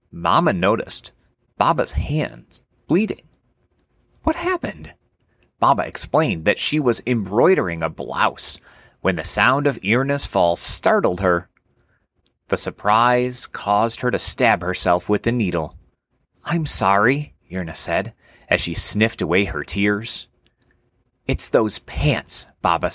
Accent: American